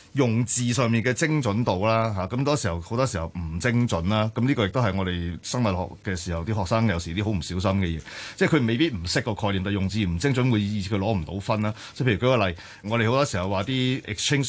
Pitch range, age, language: 100-130 Hz, 30-49, Chinese